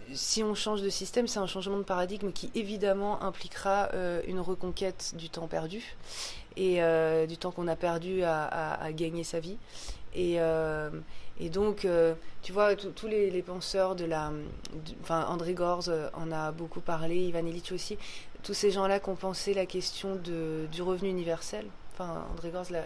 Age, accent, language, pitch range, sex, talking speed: 20-39, French, French, 165-195 Hz, female, 180 wpm